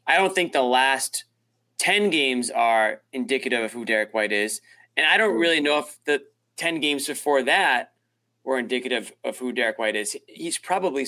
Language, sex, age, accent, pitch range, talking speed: English, male, 30-49, American, 115-140 Hz, 185 wpm